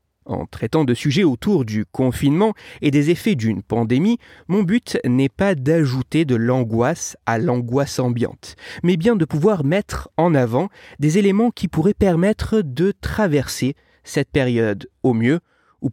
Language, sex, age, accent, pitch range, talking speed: French, male, 30-49, French, 120-190 Hz, 155 wpm